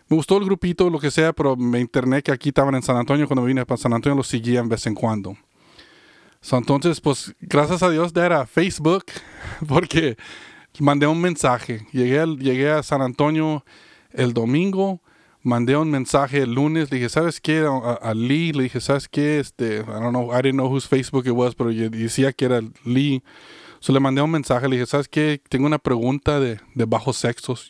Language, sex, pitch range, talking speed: English, male, 130-165 Hz, 210 wpm